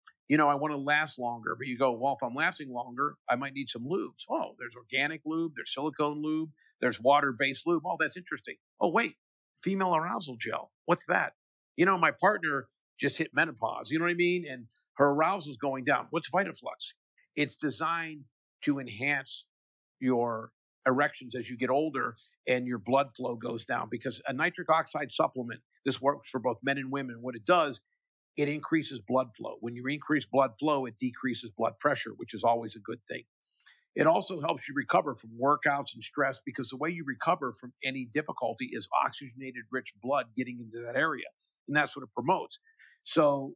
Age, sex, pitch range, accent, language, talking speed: 50-69, male, 125-155 Hz, American, English, 195 wpm